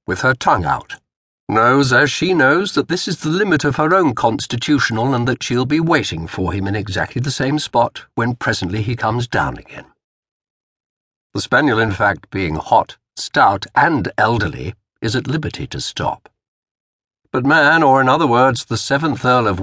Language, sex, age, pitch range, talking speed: English, male, 60-79, 105-140 Hz, 180 wpm